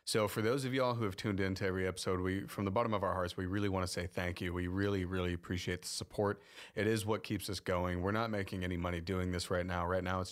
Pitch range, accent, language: 95-105 Hz, American, English